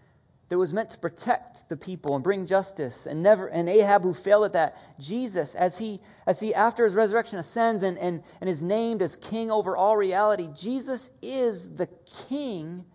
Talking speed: 190 wpm